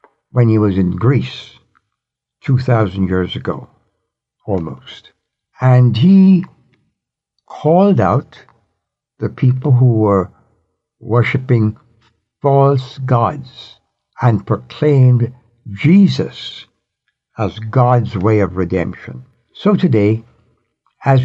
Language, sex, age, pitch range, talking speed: English, male, 60-79, 105-130 Hz, 90 wpm